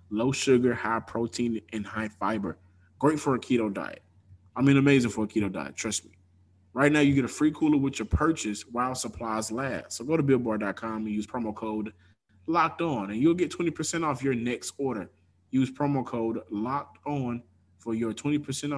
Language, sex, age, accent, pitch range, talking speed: English, male, 20-39, American, 105-130 Hz, 190 wpm